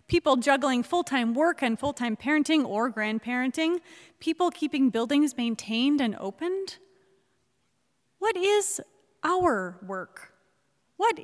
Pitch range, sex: 210-305 Hz, female